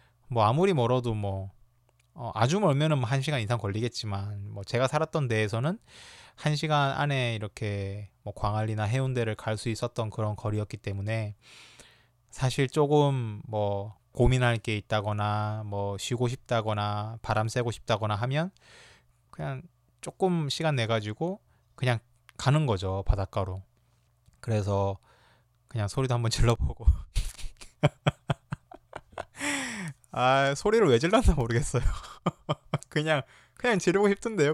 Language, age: Korean, 20-39